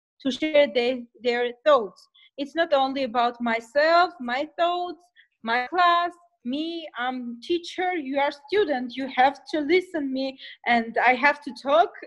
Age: 20-39